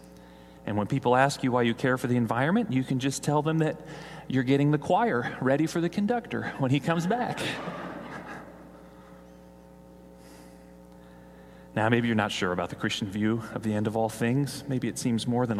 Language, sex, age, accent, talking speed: English, male, 40-59, American, 190 wpm